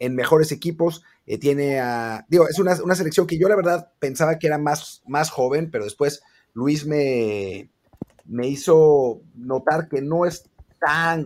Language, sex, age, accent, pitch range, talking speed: Spanish, male, 30-49, Mexican, 120-155 Hz, 170 wpm